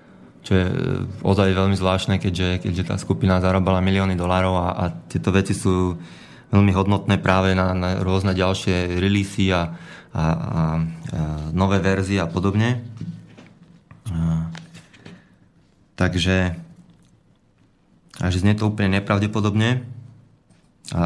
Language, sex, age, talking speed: Slovak, male, 20-39, 115 wpm